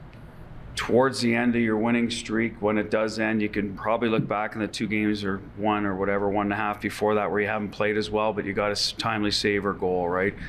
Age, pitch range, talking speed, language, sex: 40-59, 105-115 Hz, 255 wpm, English, male